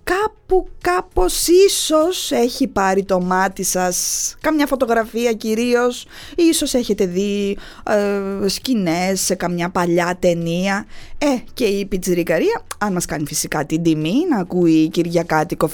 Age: 20-39